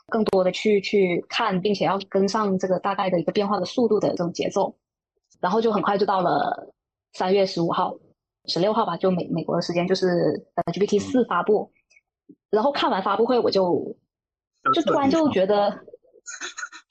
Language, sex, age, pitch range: Chinese, female, 20-39, 190-270 Hz